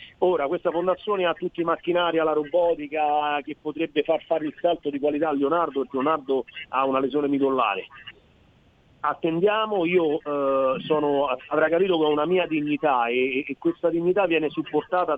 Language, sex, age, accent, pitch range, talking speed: Italian, male, 40-59, native, 145-180 Hz, 165 wpm